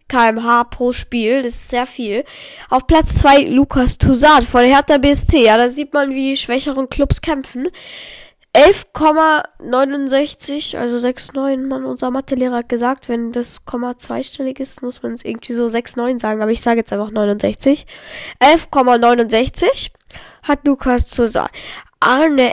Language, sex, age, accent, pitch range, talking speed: German, female, 10-29, German, 240-285 Hz, 145 wpm